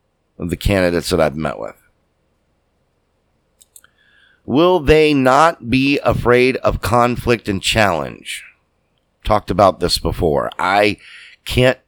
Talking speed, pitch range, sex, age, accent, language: 110 wpm, 85-125 Hz, male, 50-69, American, English